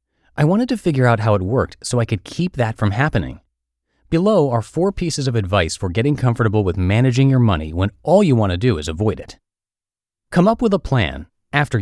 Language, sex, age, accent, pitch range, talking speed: English, male, 30-49, American, 90-140 Hz, 215 wpm